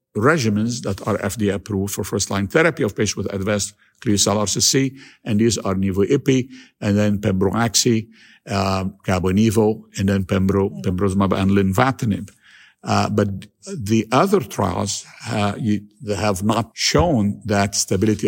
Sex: male